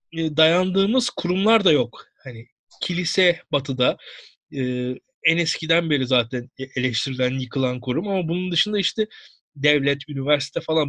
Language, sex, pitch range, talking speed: Turkish, male, 140-200 Hz, 120 wpm